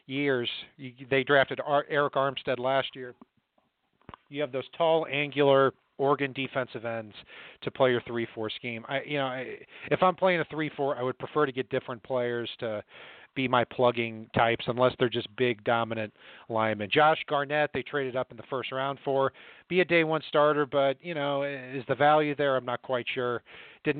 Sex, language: male, English